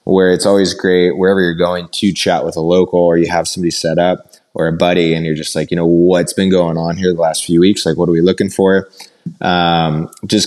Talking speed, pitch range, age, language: 250 wpm, 85-95 Hz, 20-39, English